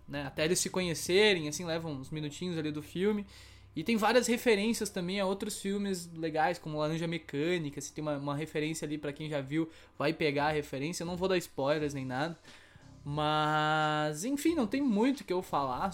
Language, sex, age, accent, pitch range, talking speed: Portuguese, male, 10-29, Brazilian, 150-200 Hz, 205 wpm